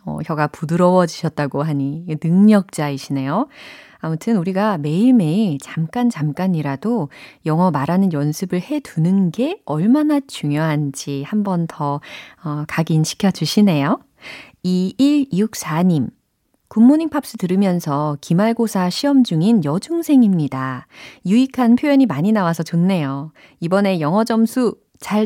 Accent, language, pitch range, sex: native, Korean, 150-215 Hz, female